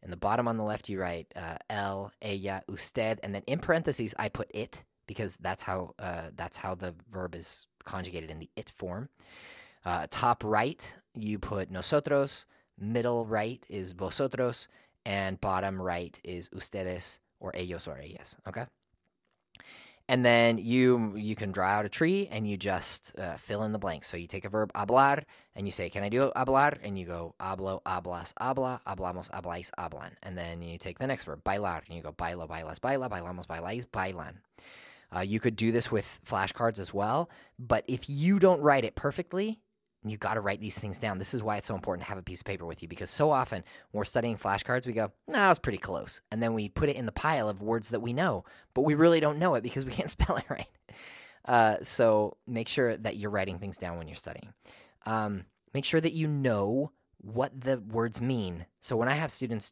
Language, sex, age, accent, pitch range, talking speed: English, male, 20-39, American, 95-125 Hz, 210 wpm